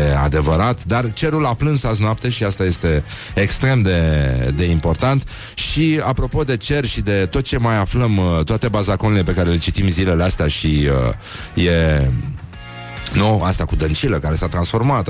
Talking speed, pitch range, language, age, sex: 165 wpm, 80-105 Hz, Romanian, 30-49, male